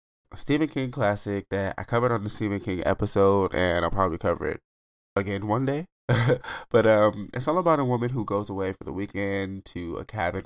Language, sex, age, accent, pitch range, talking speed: English, male, 20-39, American, 90-110 Hz, 200 wpm